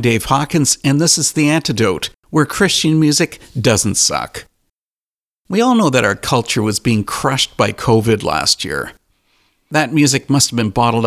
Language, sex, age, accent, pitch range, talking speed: English, male, 50-69, American, 110-150 Hz, 170 wpm